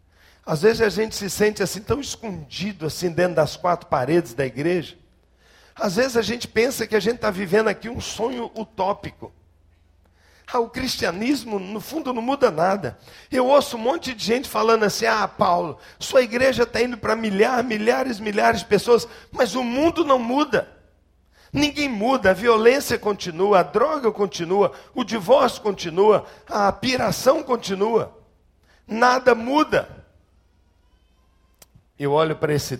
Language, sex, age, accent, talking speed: Portuguese, male, 50-69, Brazilian, 150 wpm